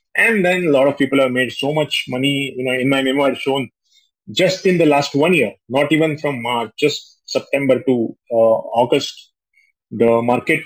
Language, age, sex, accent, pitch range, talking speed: Hindi, 30-49, male, native, 130-180 Hz, 190 wpm